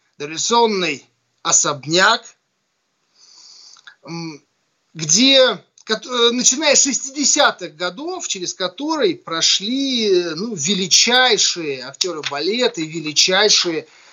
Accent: native